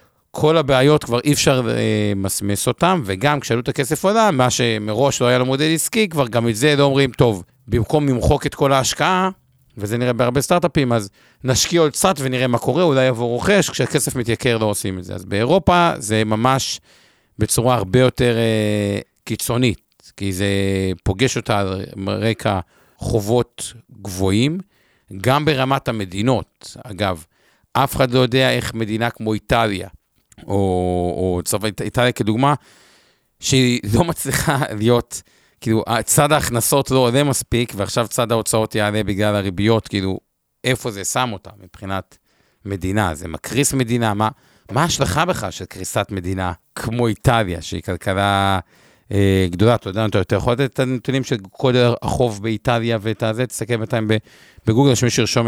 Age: 50-69